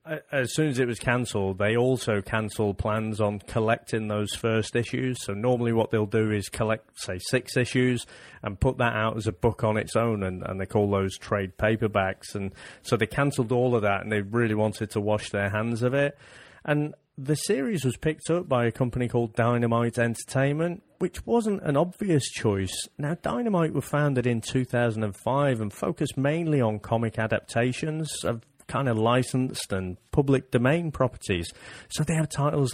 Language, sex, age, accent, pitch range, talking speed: English, male, 40-59, British, 110-135 Hz, 185 wpm